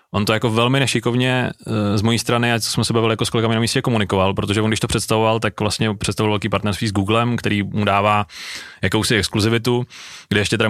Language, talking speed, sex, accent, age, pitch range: Czech, 215 wpm, male, native, 20-39, 100-115 Hz